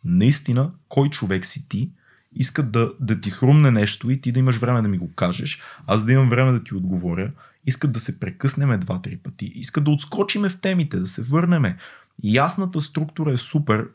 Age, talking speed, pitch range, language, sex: 20-39, 195 wpm, 105-145 Hz, Bulgarian, male